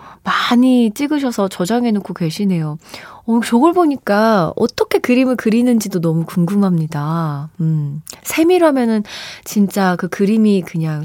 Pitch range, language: 180-260 Hz, Korean